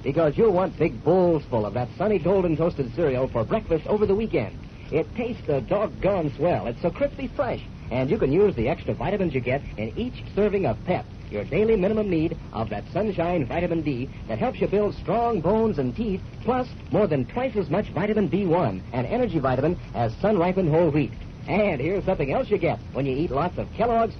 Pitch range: 135-210 Hz